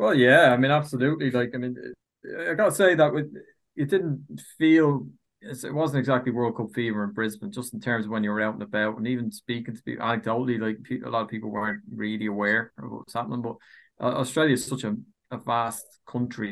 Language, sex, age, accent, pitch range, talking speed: English, male, 20-39, Irish, 110-120 Hz, 220 wpm